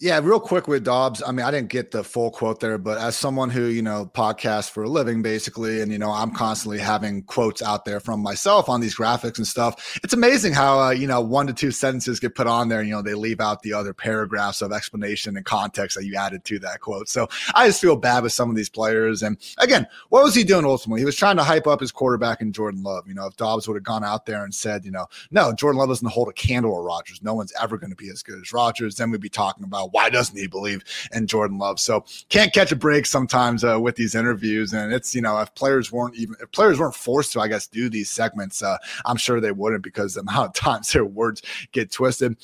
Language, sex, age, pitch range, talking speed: English, male, 30-49, 110-135 Hz, 265 wpm